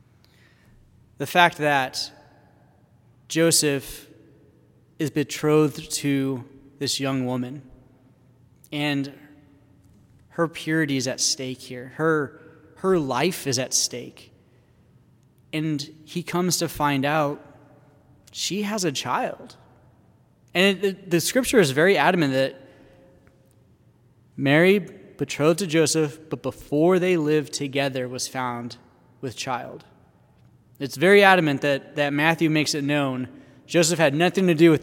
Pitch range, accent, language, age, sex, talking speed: 130-160 Hz, American, English, 20-39, male, 120 wpm